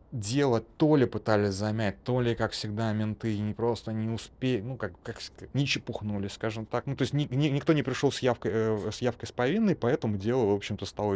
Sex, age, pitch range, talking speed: male, 20-39, 95-115 Hz, 210 wpm